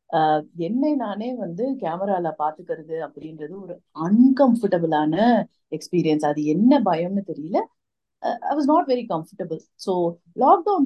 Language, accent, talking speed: Tamil, native, 105 wpm